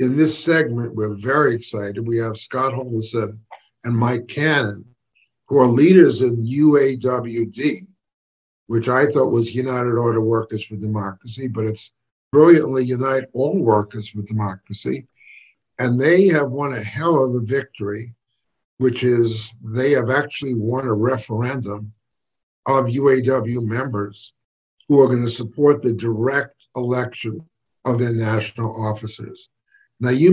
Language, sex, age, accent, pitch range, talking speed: English, male, 50-69, American, 110-140 Hz, 135 wpm